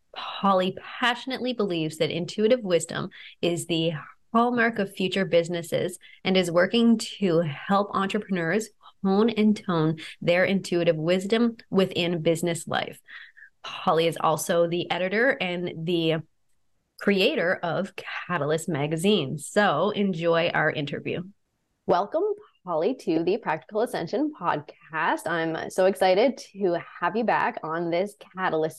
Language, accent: English, American